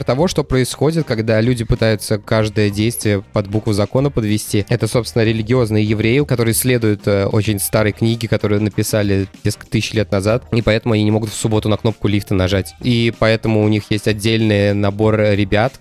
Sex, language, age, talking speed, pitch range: male, Russian, 20-39, 175 wpm, 105-115 Hz